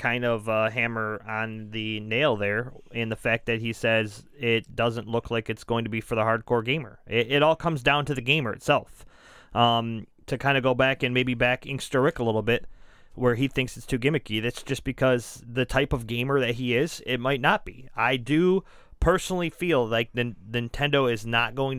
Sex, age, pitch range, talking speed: male, 30-49, 120-150 Hz, 220 wpm